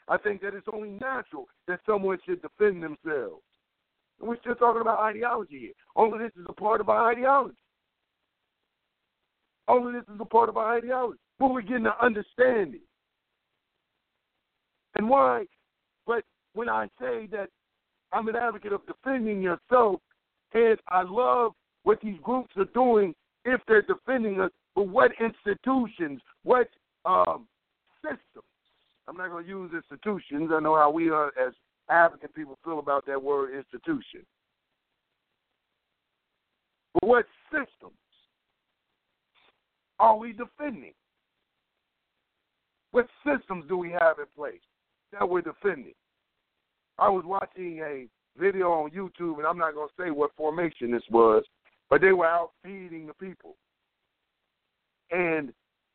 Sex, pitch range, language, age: male, 165-245 Hz, English, 60-79